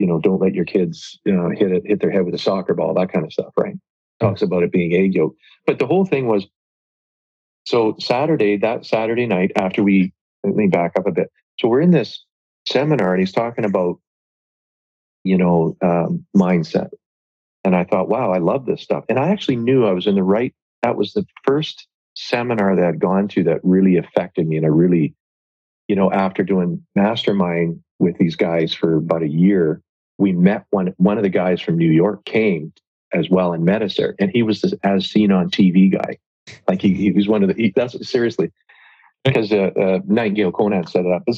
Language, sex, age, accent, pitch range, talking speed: English, male, 40-59, American, 90-105 Hz, 215 wpm